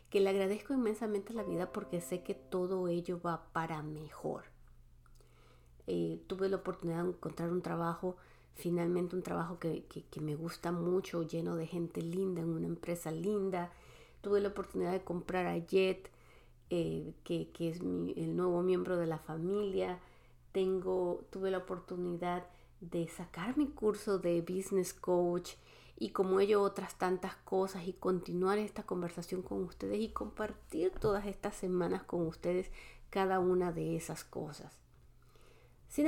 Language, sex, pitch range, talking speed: Spanish, female, 170-200 Hz, 155 wpm